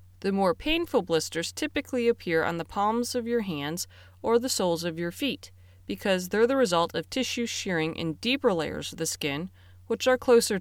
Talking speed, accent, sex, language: 190 wpm, American, female, English